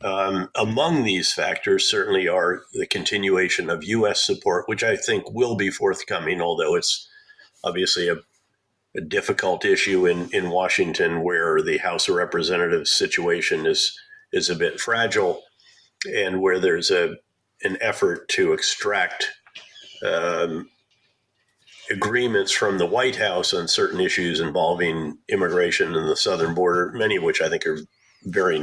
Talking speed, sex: 145 wpm, male